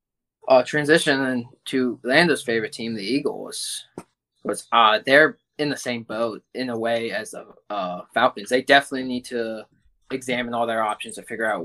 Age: 20-39